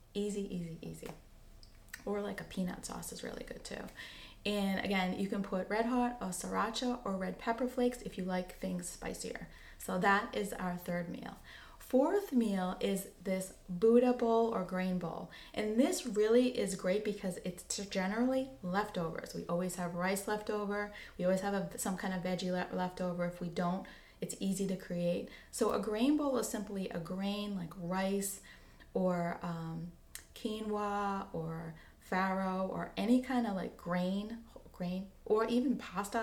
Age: 20-39